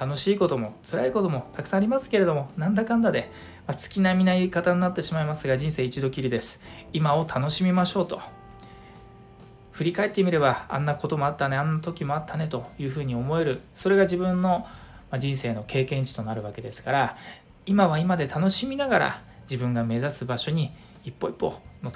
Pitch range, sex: 130-170 Hz, male